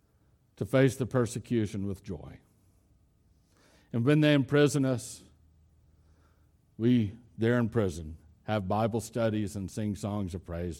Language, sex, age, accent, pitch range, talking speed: English, male, 60-79, American, 90-125 Hz, 130 wpm